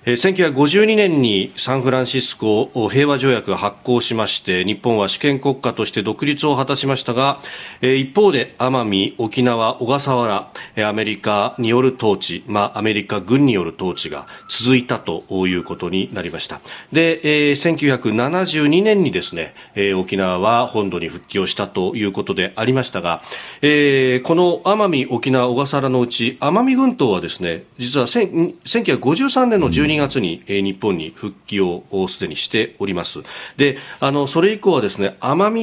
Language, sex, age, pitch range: Japanese, male, 40-59, 105-160 Hz